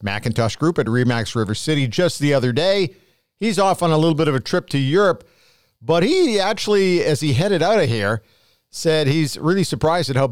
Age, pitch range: 50-69, 130-180 Hz